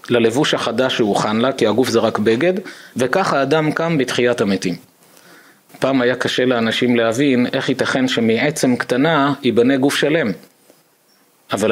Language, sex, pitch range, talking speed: Hebrew, male, 115-145 Hz, 135 wpm